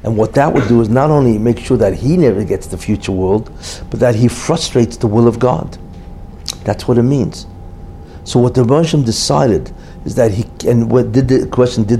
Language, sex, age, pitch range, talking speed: English, male, 60-79, 90-125 Hz, 210 wpm